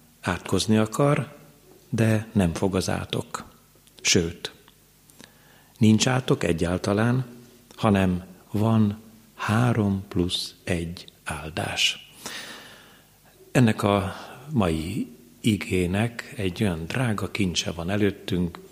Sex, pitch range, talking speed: male, 90-110 Hz, 85 wpm